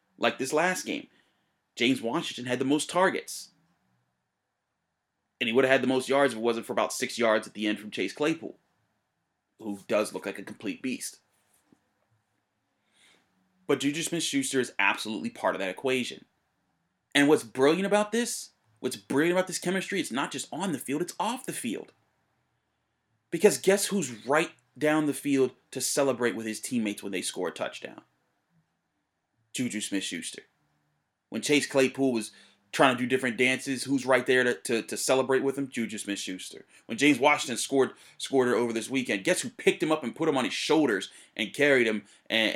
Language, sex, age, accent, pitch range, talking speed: English, male, 30-49, American, 115-145 Hz, 185 wpm